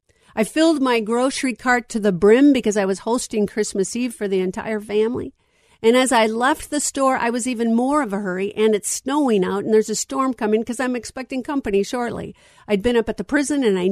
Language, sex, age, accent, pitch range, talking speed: English, female, 50-69, American, 190-245 Hz, 230 wpm